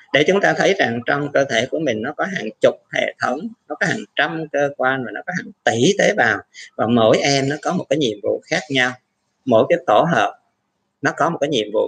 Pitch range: 120-160 Hz